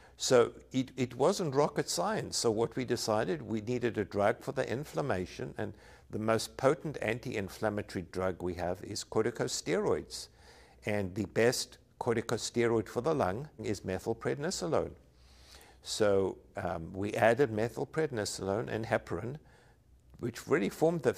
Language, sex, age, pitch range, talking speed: English, male, 60-79, 90-115 Hz, 135 wpm